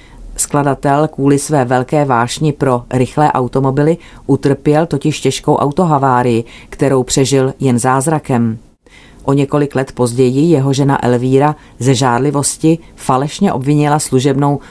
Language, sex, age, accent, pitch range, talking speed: Czech, female, 30-49, native, 130-155 Hz, 115 wpm